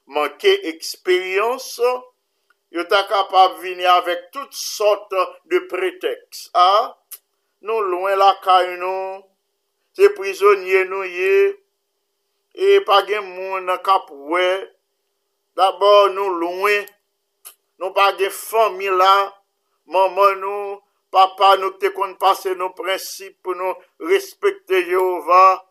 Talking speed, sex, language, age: 105 wpm, male, English, 50-69